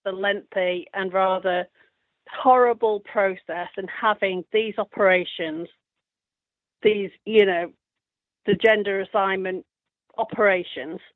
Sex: female